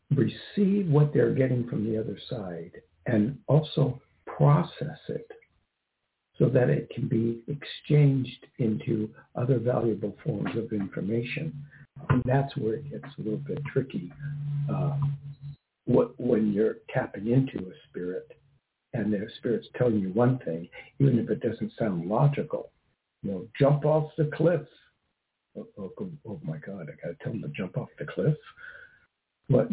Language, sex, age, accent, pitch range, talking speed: English, male, 60-79, American, 110-145 Hz, 155 wpm